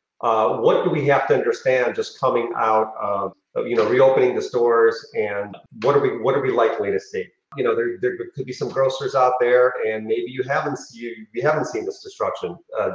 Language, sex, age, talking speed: English, male, 40-59, 220 wpm